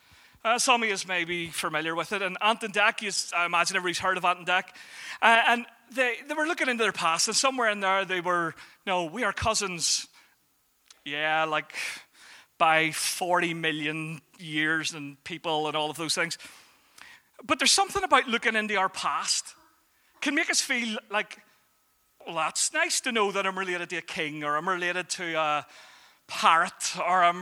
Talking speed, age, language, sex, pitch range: 185 wpm, 30-49, English, male, 180-265 Hz